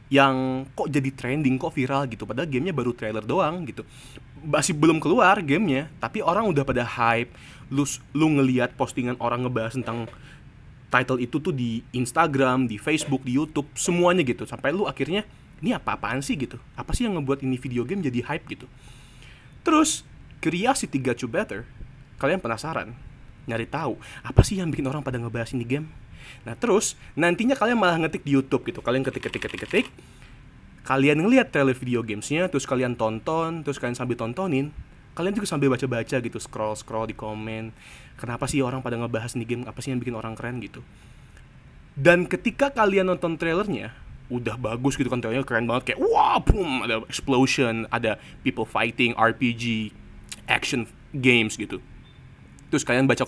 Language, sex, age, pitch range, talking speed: Indonesian, male, 20-39, 120-145 Hz, 170 wpm